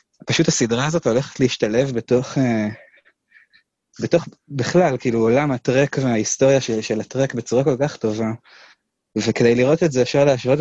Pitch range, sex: 120-155 Hz, male